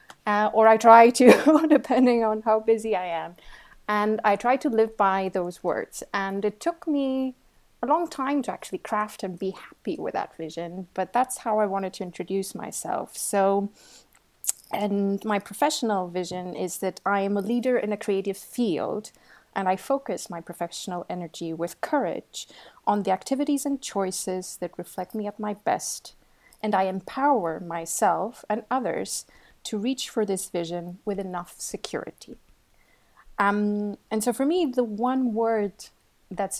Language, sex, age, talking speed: English, female, 30-49, 165 wpm